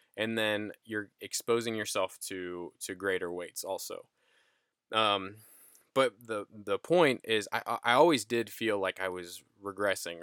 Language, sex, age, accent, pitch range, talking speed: English, male, 20-39, American, 95-120 Hz, 145 wpm